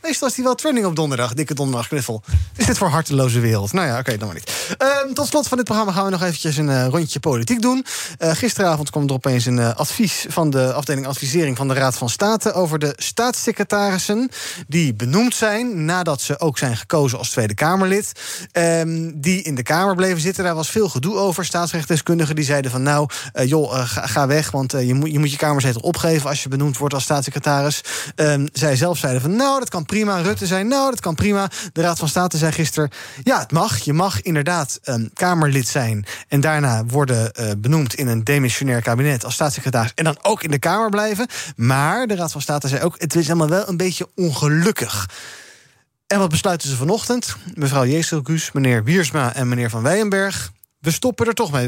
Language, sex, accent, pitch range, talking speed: Dutch, male, Dutch, 135-190 Hz, 215 wpm